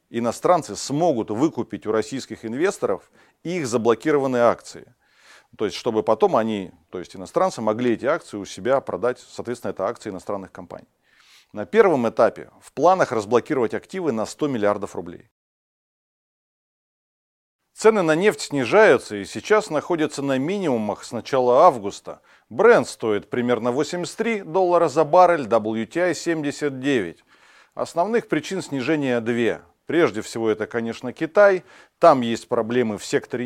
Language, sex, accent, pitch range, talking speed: Russian, male, native, 110-160 Hz, 135 wpm